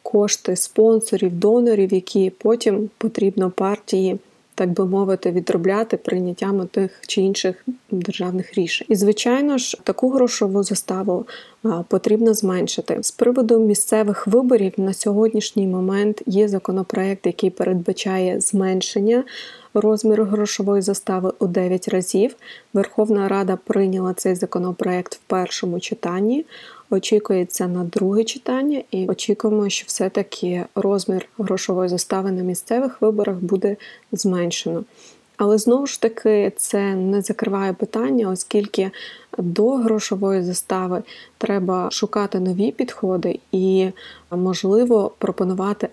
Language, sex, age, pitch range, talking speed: Ukrainian, female, 20-39, 185-215 Hz, 115 wpm